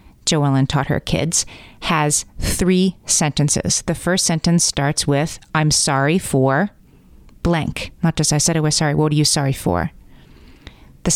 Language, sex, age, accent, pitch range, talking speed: English, female, 30-49, American, 145-175 Hz, 155 wpm